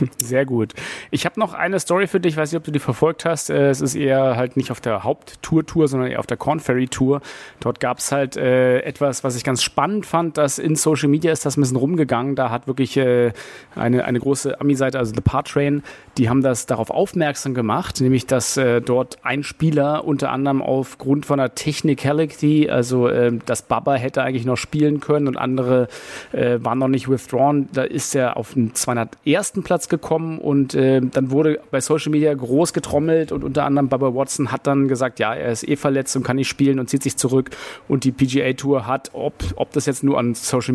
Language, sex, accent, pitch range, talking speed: German, male, German, 125-150 Hz, 215 wpm